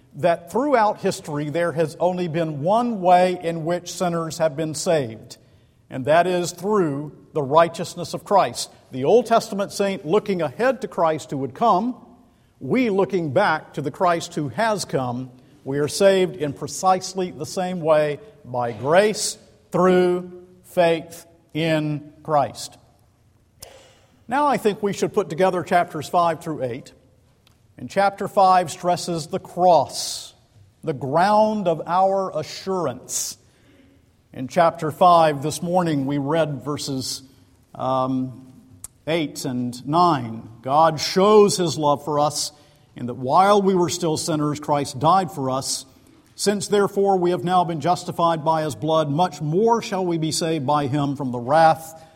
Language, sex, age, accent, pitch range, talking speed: English, male, 50-69, American, 145-185 Hz, 150 wpm